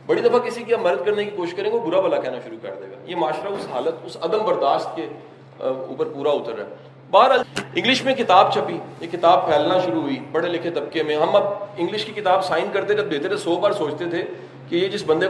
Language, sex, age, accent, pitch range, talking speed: English, male, 40-59, Indian, 135-200 Hz, 245 wpm